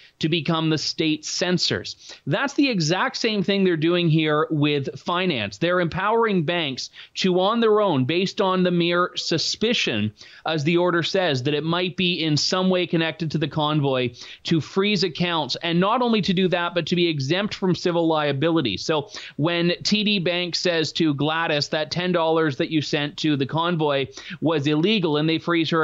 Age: 30-49